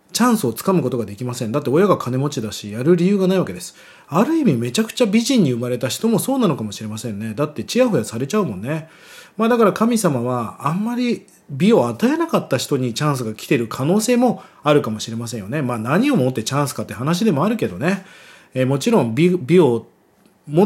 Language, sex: Japanese, male